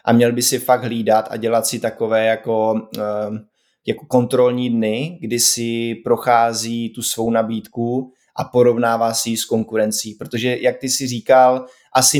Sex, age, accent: male, 20-39, native